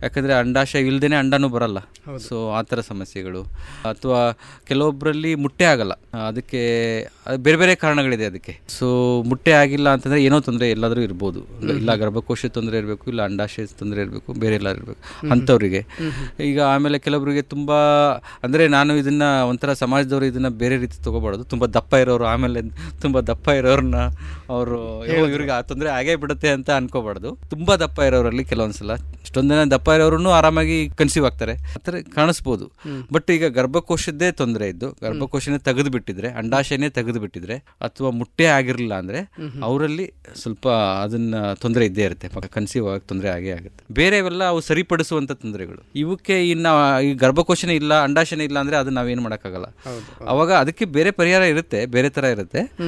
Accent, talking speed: native, 140 wpm